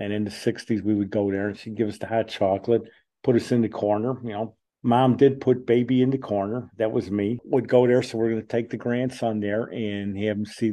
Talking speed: 265 wpm